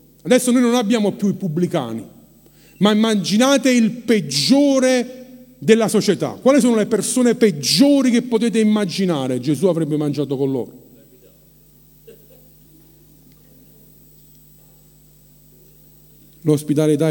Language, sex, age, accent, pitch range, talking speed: Italian, male, 50-69, native, 145-185 Hz, 95 wpm